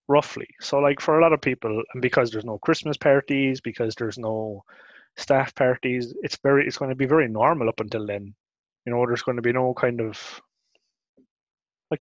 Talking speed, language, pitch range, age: 200 wpm, English, 110-135 Hz, 20-39